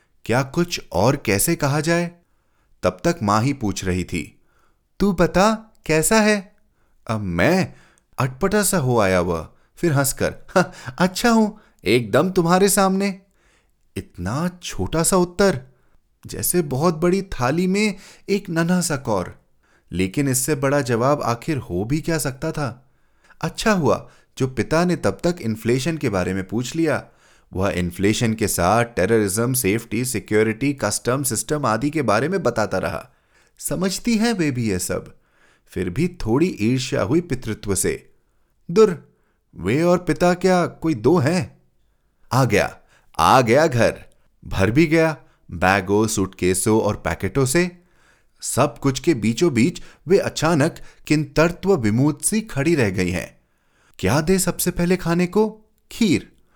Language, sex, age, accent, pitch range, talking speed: Hindi, male, 30-49, native, 110-175 Hz, 145 wpm